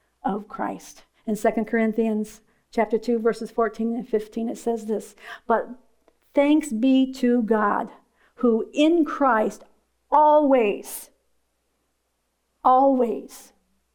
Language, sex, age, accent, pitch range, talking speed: English, female, 50-69, American, 215-245 Hz, 105 wpm